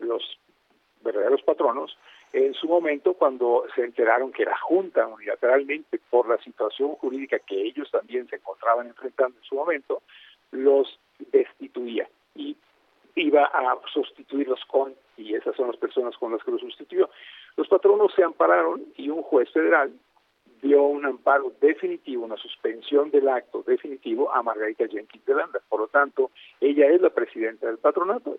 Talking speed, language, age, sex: 155 wpm, Spanish, 50-69, male